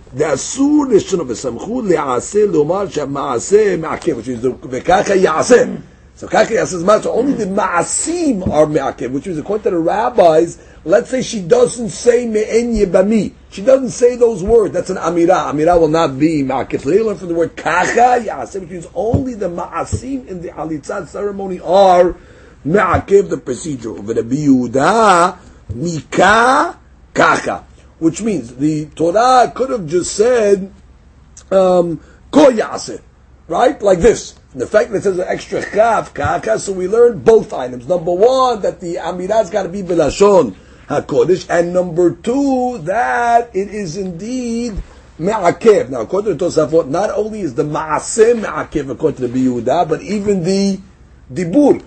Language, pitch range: English, 165-240 Hz